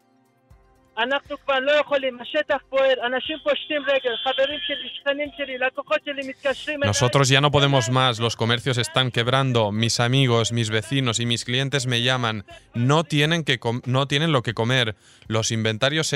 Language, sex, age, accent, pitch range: Spanish, male, 20-39, Spanish, 115-155 Hz